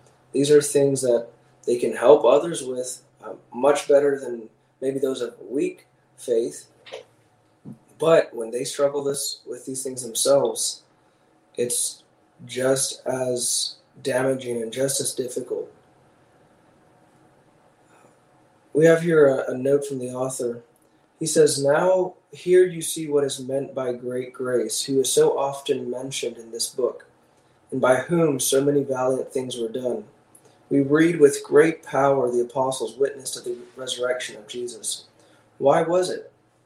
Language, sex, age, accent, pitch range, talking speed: English, male, 20-39, American, 125-160 Hz, 145 wpm